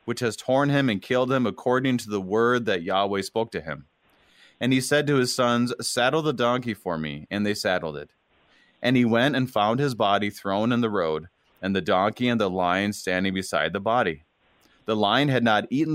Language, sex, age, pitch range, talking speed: English, male, 30-49, 95-120 Hz, 215 wpm